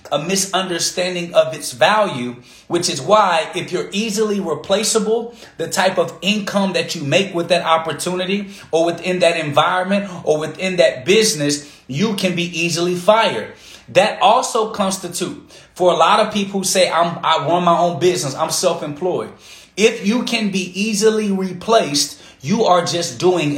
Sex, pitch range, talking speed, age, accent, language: male, 155-195 Hz, 160 wpm, 30-49, American, English